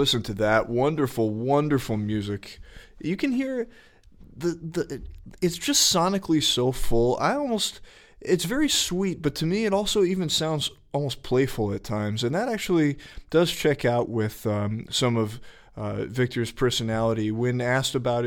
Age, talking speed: 20-39, 160 wpm